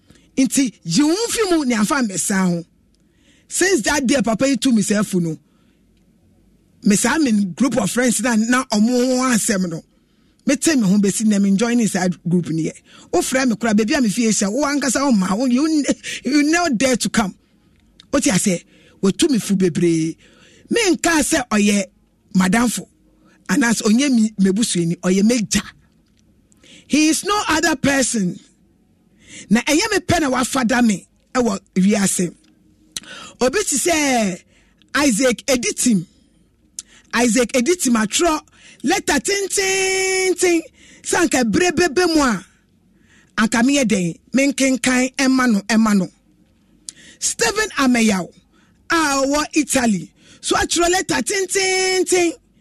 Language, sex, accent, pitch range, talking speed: English, male, Nigerian, 210-300 Hz, 145 wpm